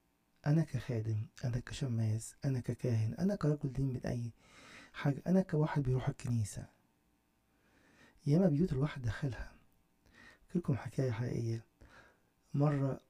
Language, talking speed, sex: English, 110 wpm, male